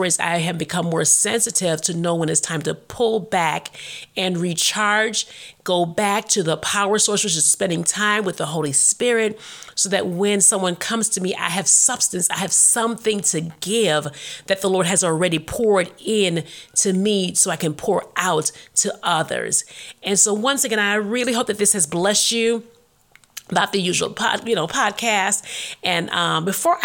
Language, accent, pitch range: English, American, 170-225 Hz